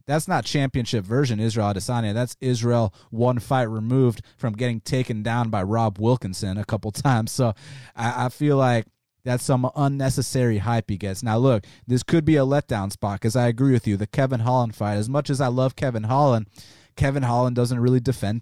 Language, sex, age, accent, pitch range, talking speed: English, male, 20-39, American, 115-145 Hz, 200 wpm